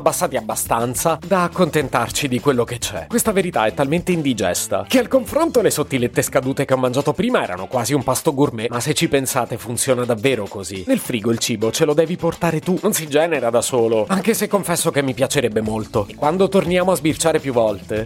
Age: 30-49